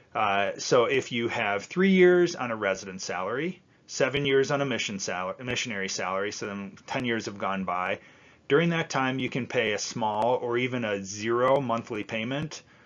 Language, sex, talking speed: English, male, 190 wpm